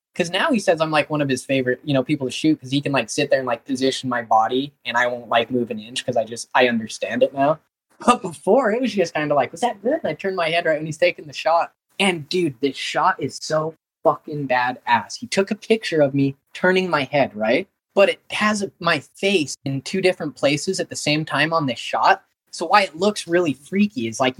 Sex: male